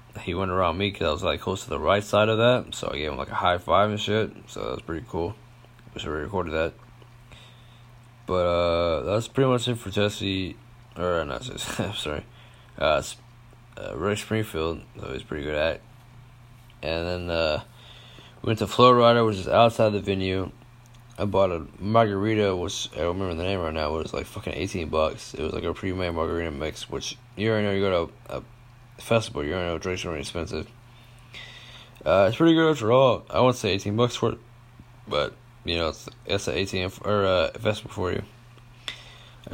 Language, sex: English, male